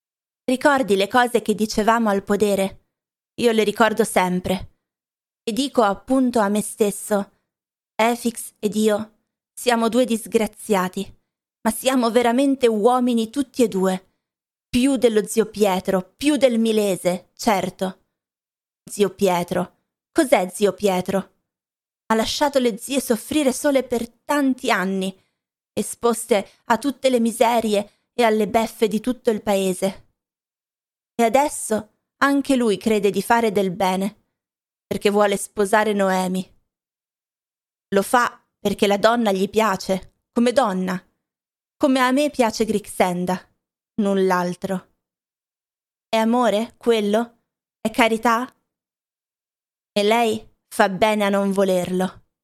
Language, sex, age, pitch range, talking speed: Italian, female, 20-39, 195-235 Hz, 120 wpm